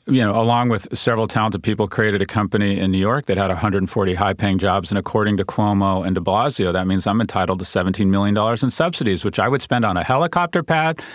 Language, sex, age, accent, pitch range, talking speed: English, male, 40-59, American, 105-130 Hz, 225 wpm